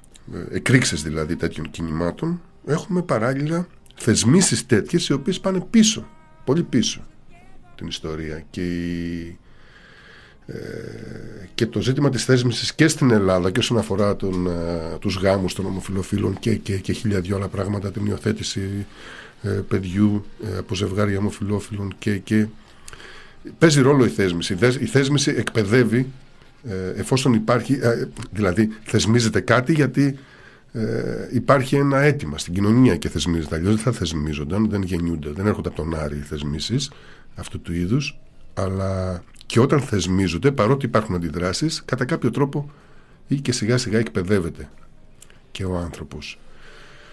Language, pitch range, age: Greek, 90-125 Hz, 50-69